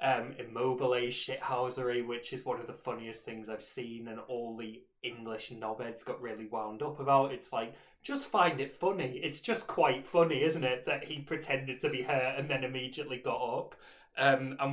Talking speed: 190 wpm